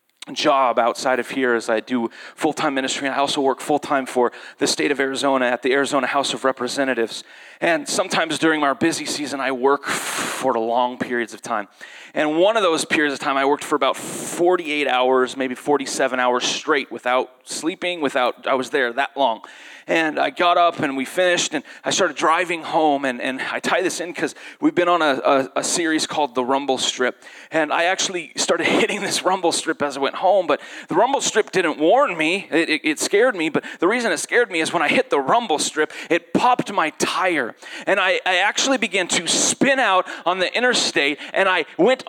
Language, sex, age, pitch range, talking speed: English, male, 30-49, 130-175 Hz, 210 wpm